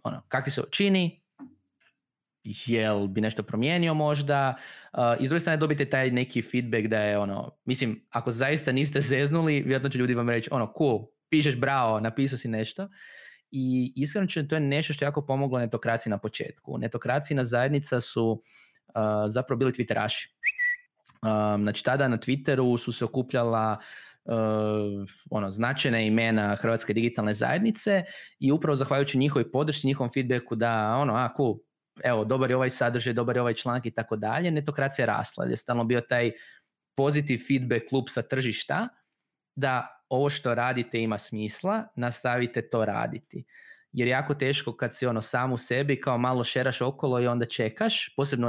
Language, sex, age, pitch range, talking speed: Croatian, male, 20-39, 115-140 Hz, 165 wpm